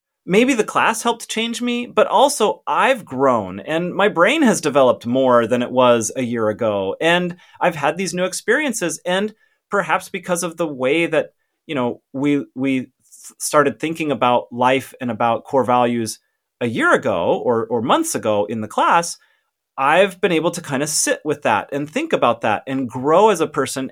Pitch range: 125-185 Hz